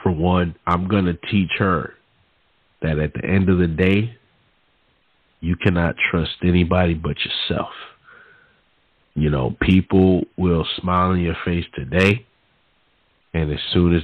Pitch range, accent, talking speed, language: 85-105 Hz, American, 140 wpm, English